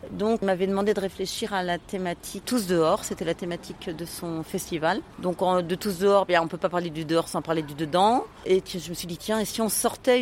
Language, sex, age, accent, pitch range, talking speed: French, female, 30-49, French, 165-200 Hz, 295 wpm